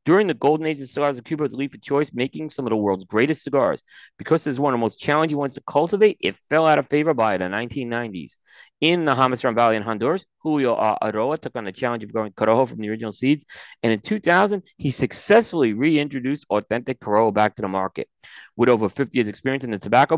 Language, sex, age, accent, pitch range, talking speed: English, male, 40-59, American, 115-155 Hz, 230 wpm